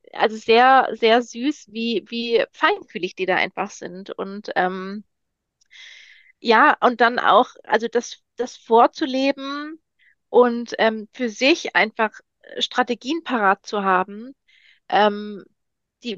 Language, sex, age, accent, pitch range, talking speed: German, female, 30-49, German, 205-255 Hz, 120 wpm